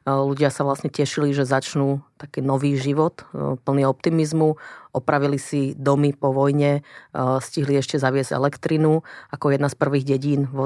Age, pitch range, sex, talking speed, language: 30-49, 135-150 Hz, female, 145 wpm, Slovak